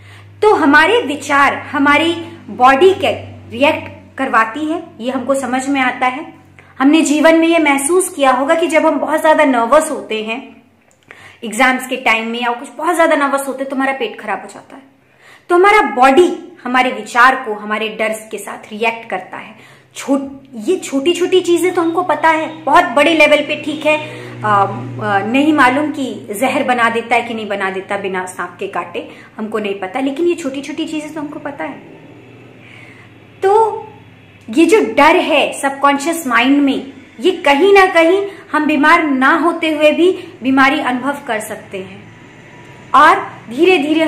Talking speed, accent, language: 175 wpm, native, Hindi